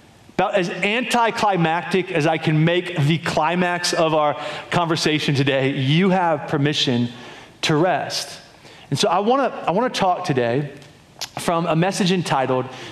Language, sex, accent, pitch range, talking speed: English, male, American, 150-215 Hz, 140 wpm